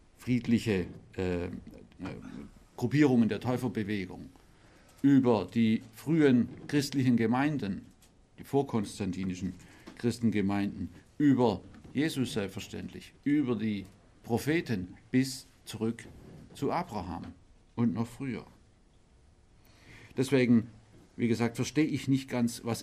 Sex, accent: male, German